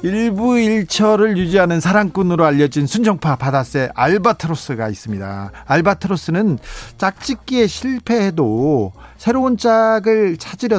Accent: native